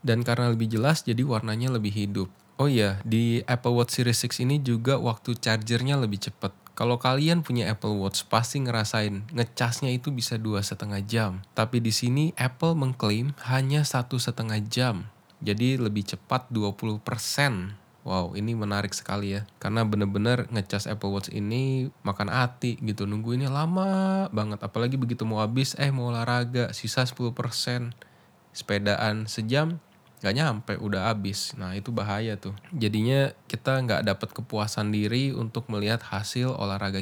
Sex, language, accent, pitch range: male, Indonesian, native, 105-125 Hz